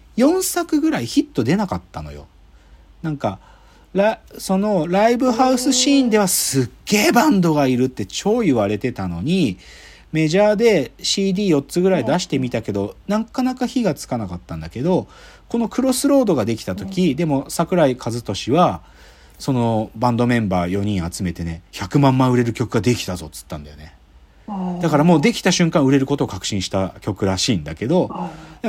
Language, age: Japanese, 40-59